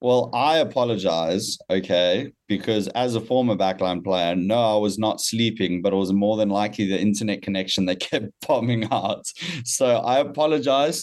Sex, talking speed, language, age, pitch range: male, 170 wpm, English, 20-39, 105-120 Hz